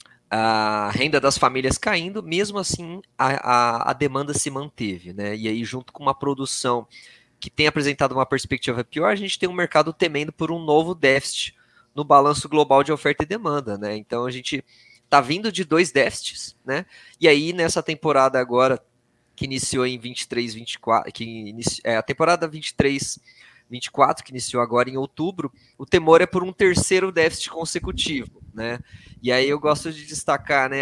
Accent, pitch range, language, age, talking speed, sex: Brazilian, 125-155 Hz, Portuguese, 20-39, 170 wpm, male